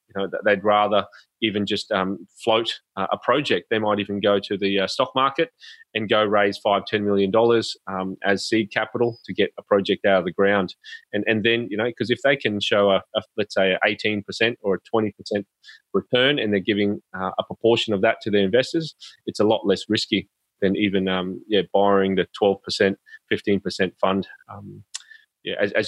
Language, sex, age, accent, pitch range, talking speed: English, male, 30-49, Australian, 100-115 Hz, 210 wpm